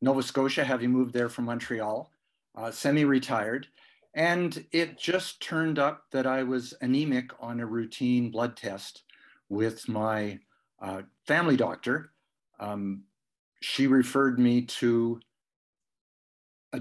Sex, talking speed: male, 120 wpm